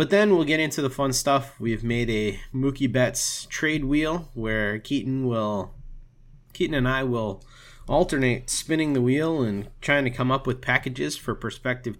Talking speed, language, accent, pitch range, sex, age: 175 wpm, English, American, 115-140 Hz, male, 30-49